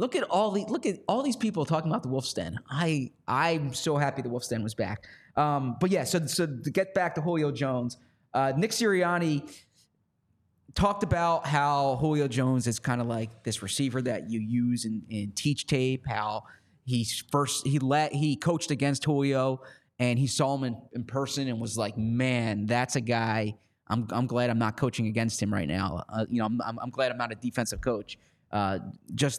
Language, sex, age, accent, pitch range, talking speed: English, male, 20-39, American, 120-150 Hz, 205 wpm